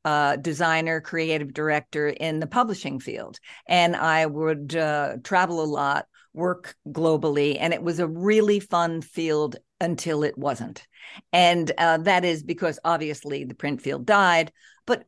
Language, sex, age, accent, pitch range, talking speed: English, female, 50-69, American, 155-220 Hz, 150 wpm